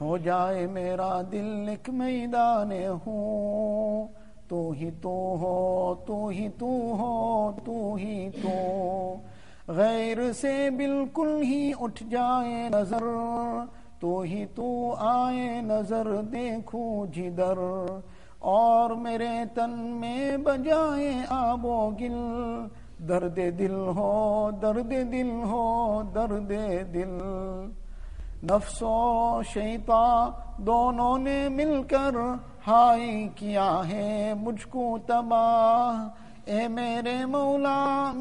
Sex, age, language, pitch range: male, 50-69, English, 195-240 Hz